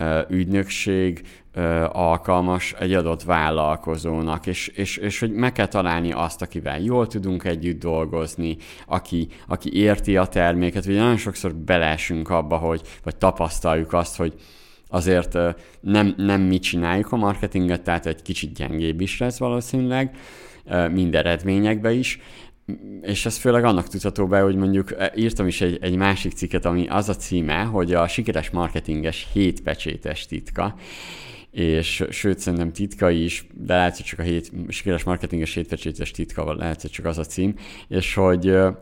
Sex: male